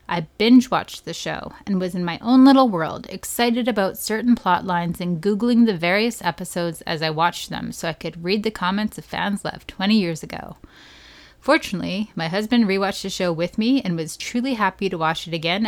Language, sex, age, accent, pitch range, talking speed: English, female, 30-49, American, 175-230 Hz, 205 wpm